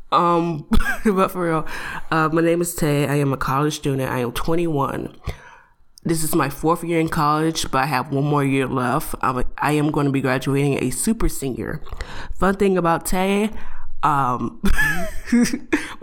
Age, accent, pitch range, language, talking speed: 20-39, American, 140-190 Hz, English, 170 wpm